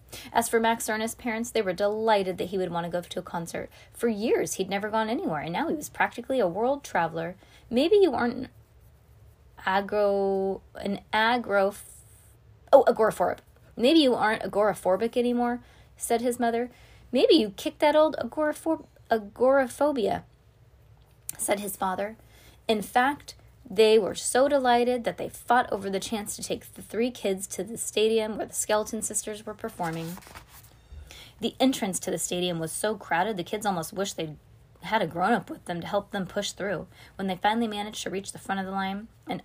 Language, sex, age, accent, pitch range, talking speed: English, female, 20-39, American, 185-230 Hz, 180 wpm